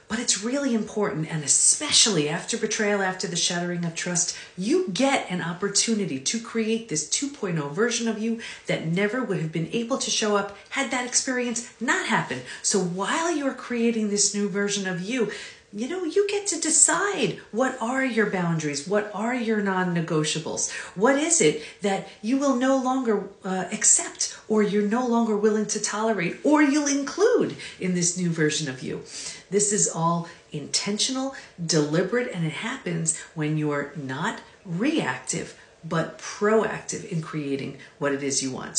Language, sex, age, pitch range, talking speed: English, female, 40-59, 170-240 Hz, 165 wpm